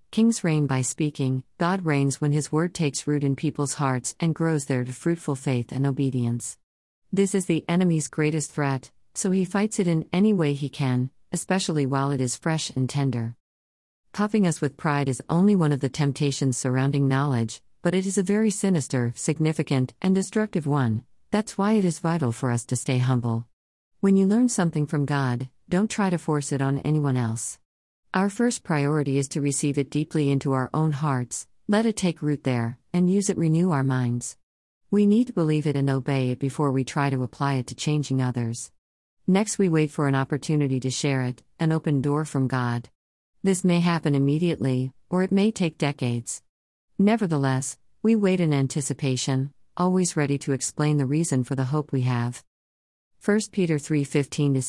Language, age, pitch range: English, 50-69, 130-170 Hz